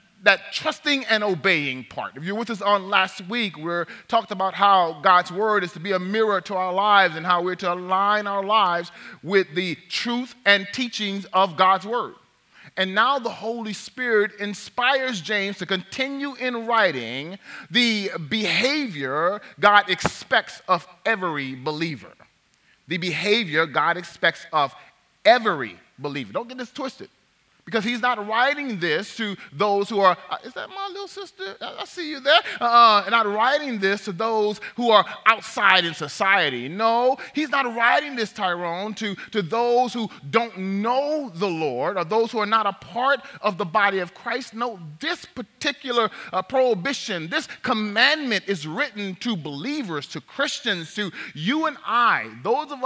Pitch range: 185-240 Hz